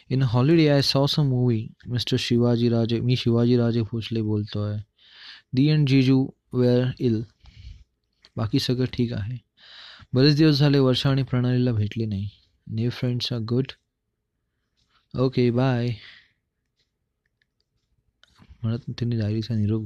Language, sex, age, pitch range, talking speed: Marathi, male, 20-39, 110-135 Hz, 90 wpm